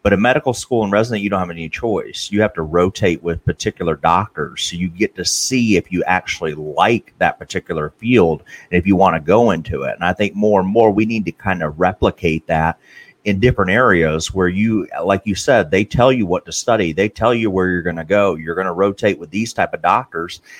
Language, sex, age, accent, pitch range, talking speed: English, male, 30-49, American, 85-120 Hz, 240 wpm